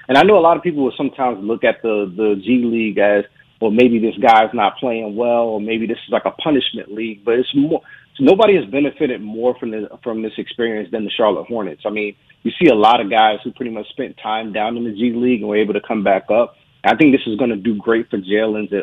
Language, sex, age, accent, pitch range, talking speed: English, male, 30-49, American, 110-130 Hz, 265 wpm